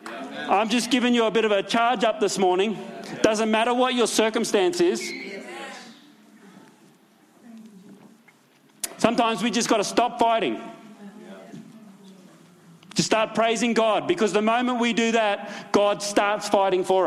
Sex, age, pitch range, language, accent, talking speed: male, 40-59, 205-230 Hz, English, Australian, 135 wpm